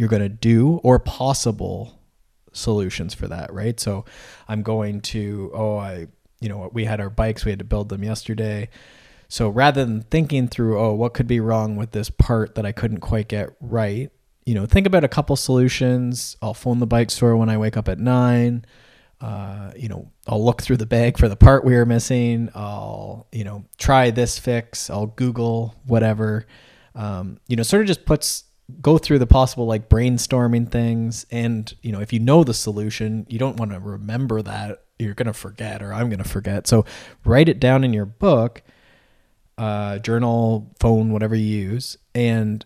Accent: American